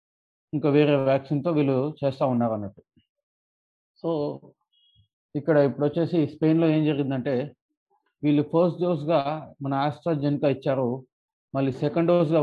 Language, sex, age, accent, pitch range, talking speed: Telugu, male, 30-49, native, 140-170 Hz, 105 wpm